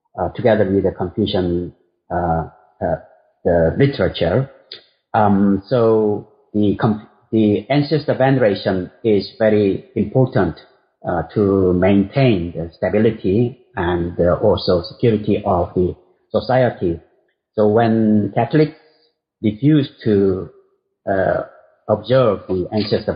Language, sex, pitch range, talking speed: English, male, 90-120 Hz, 105 wpm